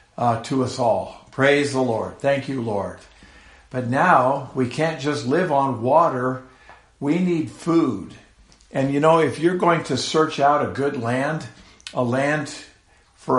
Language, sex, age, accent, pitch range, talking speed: English, male, 60-79, American, 120-155 Hz, 160 wpm